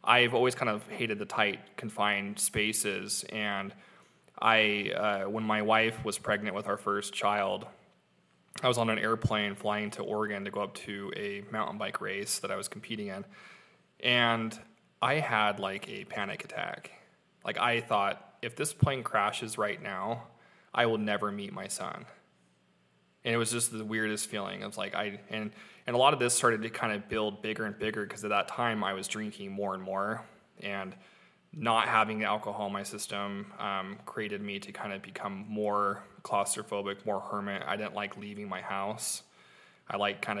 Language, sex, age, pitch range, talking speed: English, male, 20-39, 100-110 Hz, 185 wpm